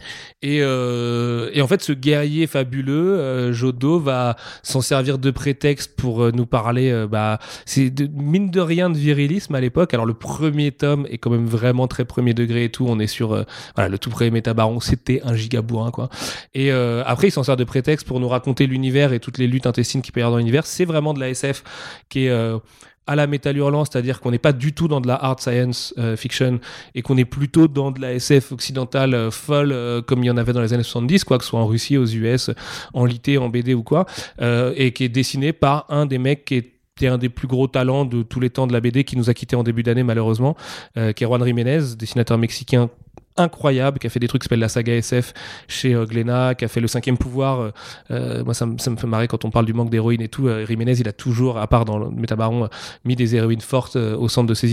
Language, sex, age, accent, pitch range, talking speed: French, male, 30-49, French, 120-140 Hz, 250 wpm